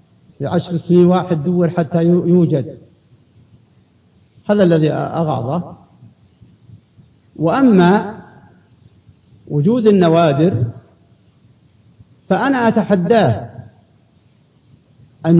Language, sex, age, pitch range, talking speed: Arabic, male, 50-69, 145-185 Hz, 60 wpm